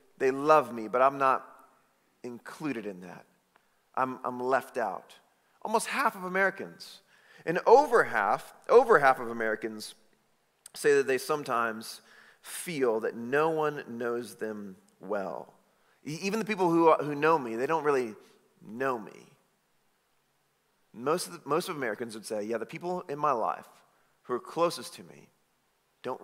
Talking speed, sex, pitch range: 155 wpm, male, 125-190 Hz